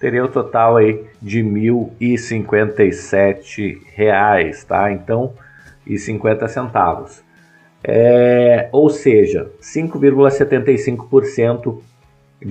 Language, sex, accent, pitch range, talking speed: Portuguese, male, Brazilian, 95-115 Hz, 75 wpm